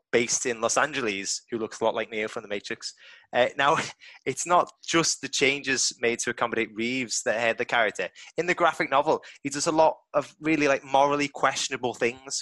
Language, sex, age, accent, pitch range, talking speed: English, male, 20-39, British, 120-165 Hz, 205 wpm